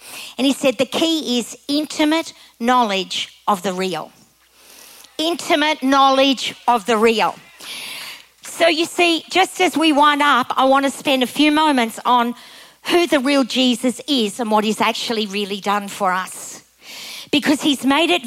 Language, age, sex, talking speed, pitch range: English, 50-69, female, 160 wpm, 235-285 Hz